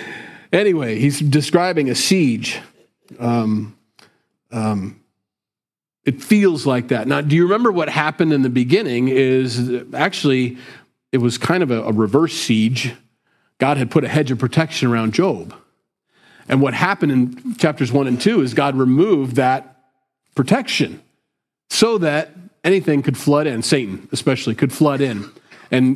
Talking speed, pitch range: 150 wpm, 120-155 Hz